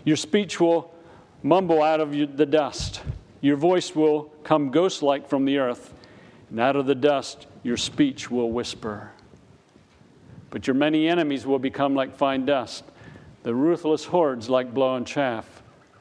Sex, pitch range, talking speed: male, 120-155 Hz, 155 wpm